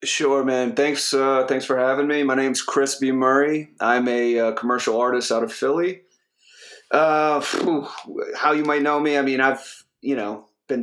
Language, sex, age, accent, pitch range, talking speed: English, male, 30-49, American, 115-135 Hz, 190 wpm